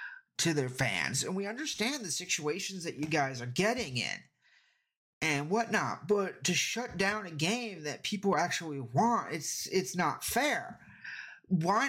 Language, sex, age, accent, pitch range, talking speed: English, male, 30-49, American, 145-200 Hz, 155 wpm